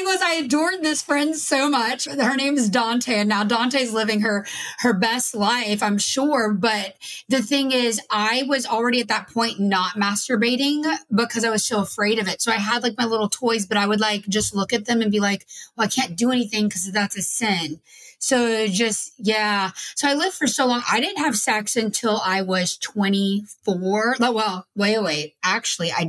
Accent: American